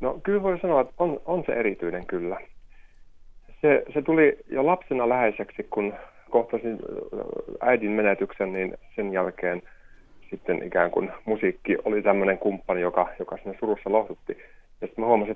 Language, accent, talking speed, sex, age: Finnish, native, 150 wpm, male, 30-49